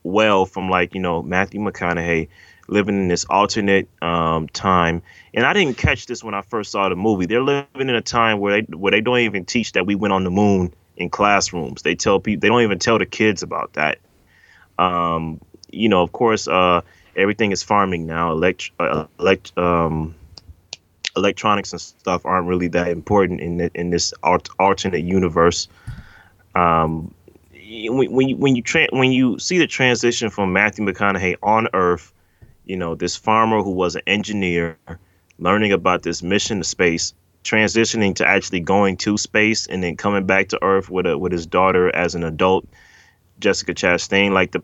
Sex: male